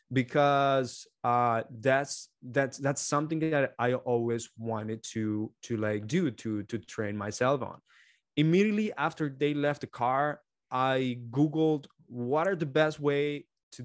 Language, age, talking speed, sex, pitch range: English, 20-39, 145 wpm, male, 110-140 Hz